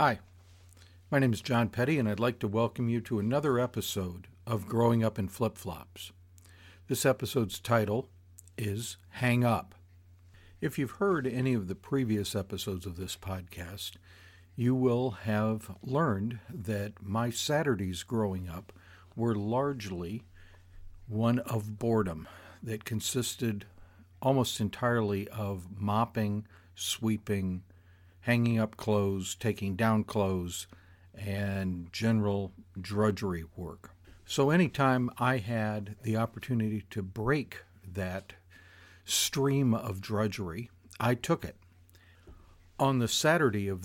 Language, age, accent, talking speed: English, 60-79, American, 120 wpm